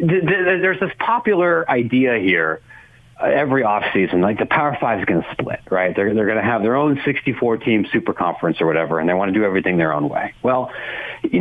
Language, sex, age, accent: English, male, 40-59, American